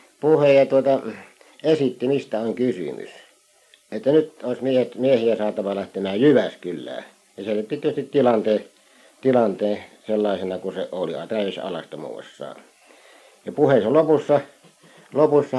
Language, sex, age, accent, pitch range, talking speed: Finnish, male, 60-79, native, 110-135 Hz, 105 wpm